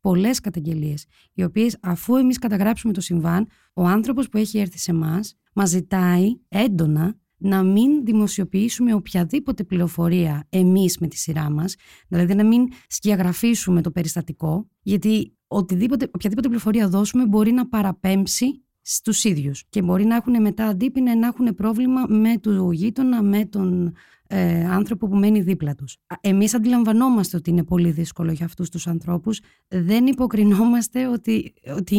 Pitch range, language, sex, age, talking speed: 175-230 Hz, Greek, female, 30-49, 150 wpm